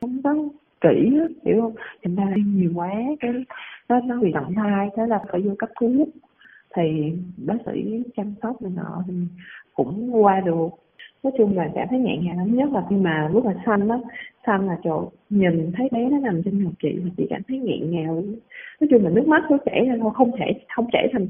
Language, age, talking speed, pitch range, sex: Vietnamese, 20-39, 215 wpm, 185-250 Hz, female